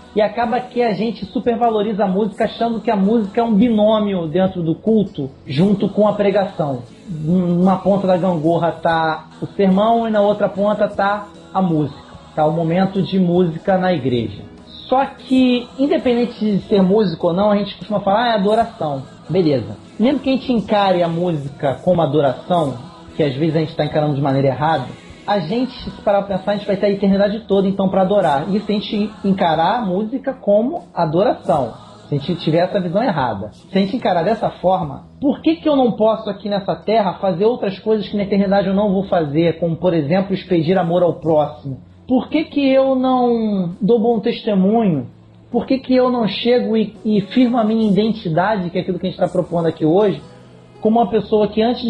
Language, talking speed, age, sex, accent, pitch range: Portuguese, 205 wpm, 30-49, male, Brazilian, 175-220 Hz